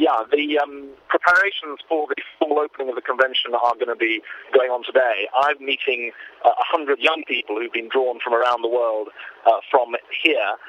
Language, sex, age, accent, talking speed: English, male, 30-49, British, 190 wpm